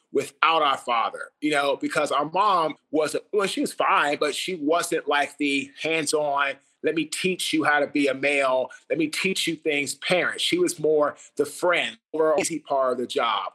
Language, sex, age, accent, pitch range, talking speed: English, male, 30-49, American, 145-175 Hz, 200 wpm